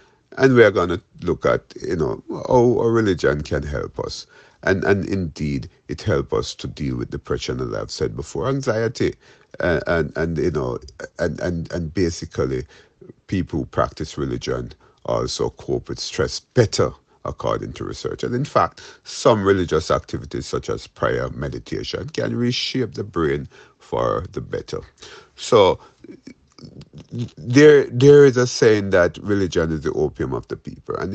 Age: 50-69